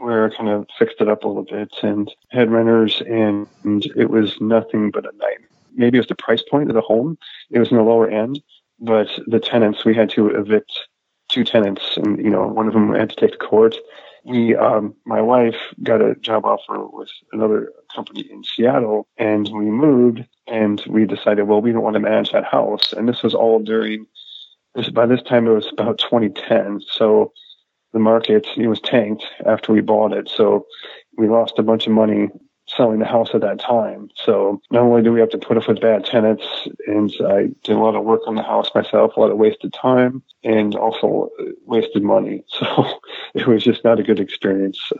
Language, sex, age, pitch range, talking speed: English, male, 30-49, 105-120 Hz, 210 wpm